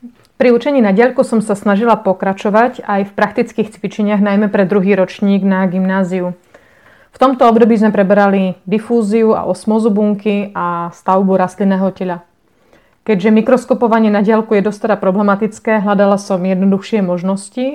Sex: female